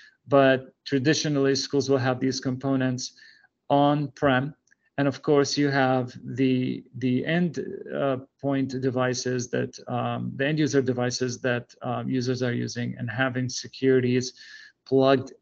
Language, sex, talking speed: English, male, 130 wpm